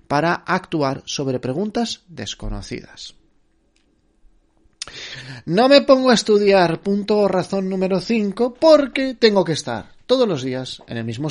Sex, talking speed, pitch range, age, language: male, 125 wpm, 130-215 Hz, 30-49, Spanish